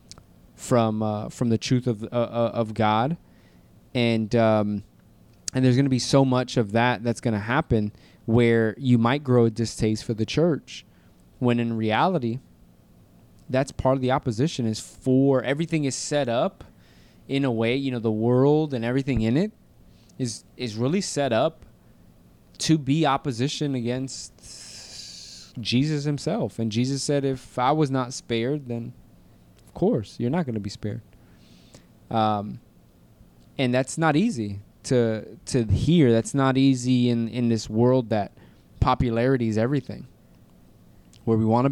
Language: English